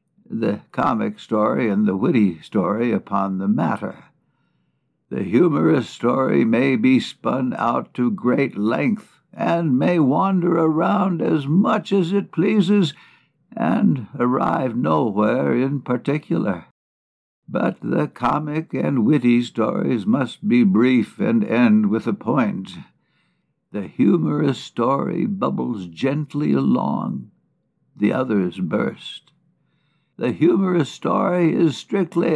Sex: male